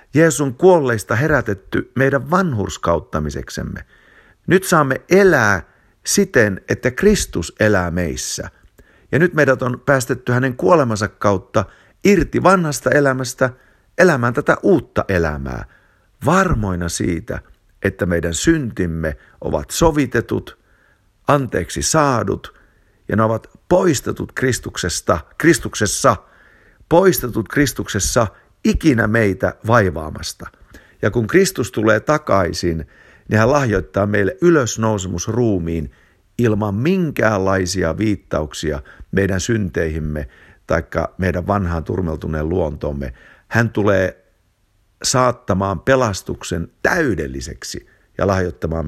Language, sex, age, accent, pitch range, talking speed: Finnish, male, 50-69, native, 95-135 Hz, 90 wpm